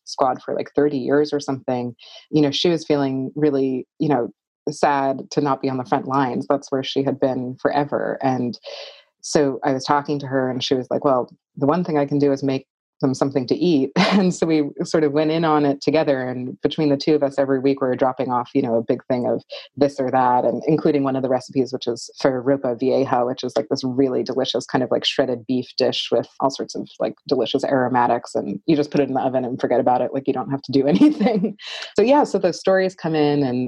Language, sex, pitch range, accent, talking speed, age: English, female, 130-145 Hz, American, 250 wpm, 30-49